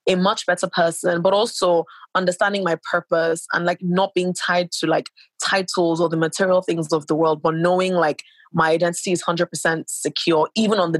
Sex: female